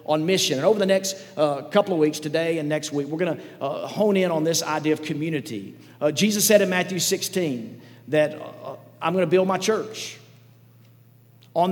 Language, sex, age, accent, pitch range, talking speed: English, male, 40-59, American, 145-185 Hz, 200 wpm